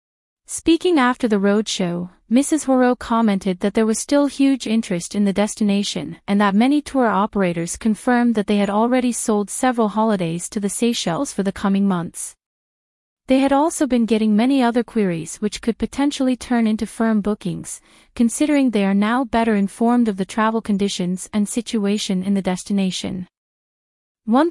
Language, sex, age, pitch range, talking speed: English, female, 30-49, 200-245 Hz, 165 wpm